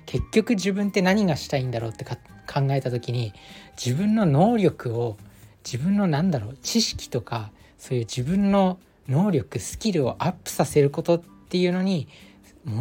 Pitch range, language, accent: 120-170 Hz, Japanese, native